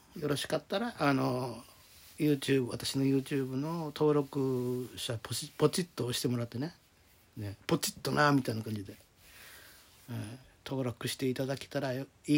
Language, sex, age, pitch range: Japanese, male, 60-79, 105-135 Hz